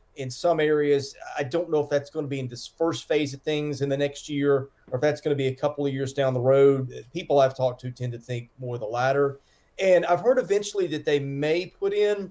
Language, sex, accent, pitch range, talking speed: English, male, American, 130-155 Hz, 260 wpm